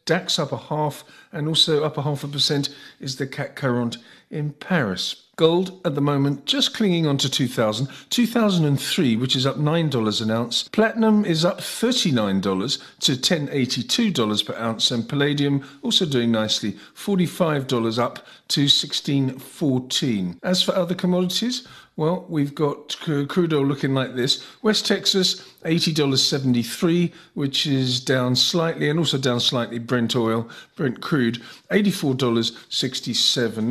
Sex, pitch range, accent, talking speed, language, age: male, 120-160 Hz, British, 145 wpm, English, 50-69